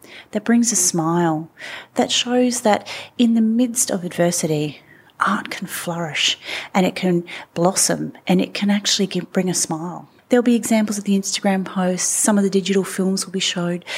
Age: 30-49